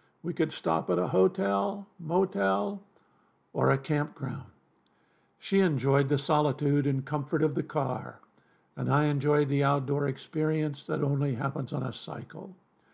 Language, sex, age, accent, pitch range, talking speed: English, male, 50-69, American, 140-160 Hz, 145 wpm